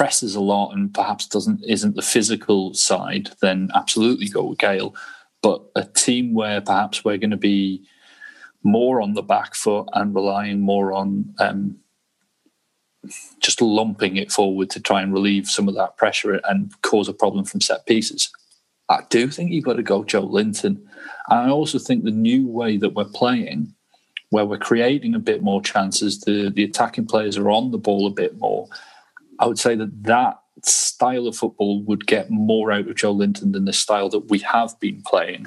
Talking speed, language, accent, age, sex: 190 wpm, English, British, 30-49, male